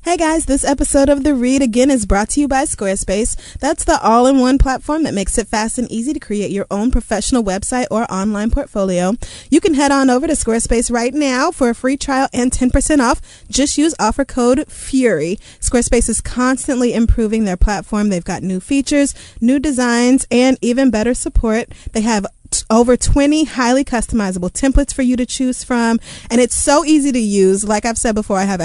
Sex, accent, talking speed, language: female, American, 195 wpm, English